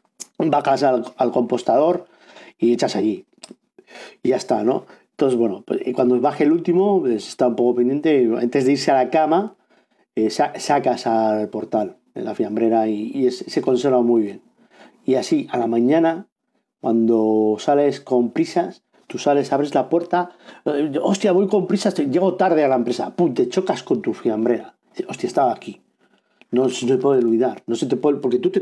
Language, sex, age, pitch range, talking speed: Spanish, male, 50-69, 125-185 Hz, 190 wpm